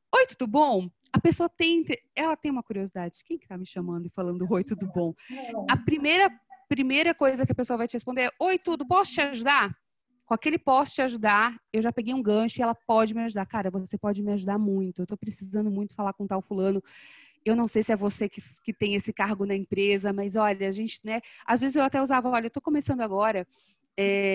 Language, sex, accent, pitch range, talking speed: Portuguese, female, Brazilian, 200-250 Hz, 235 wpm